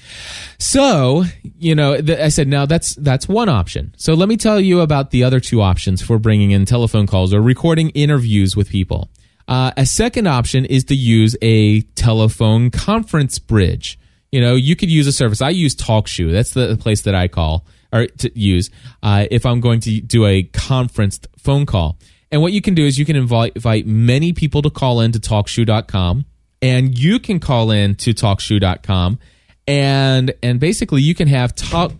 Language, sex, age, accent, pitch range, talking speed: English, male, 20-39, American, 105-135 Hz, 190 wpm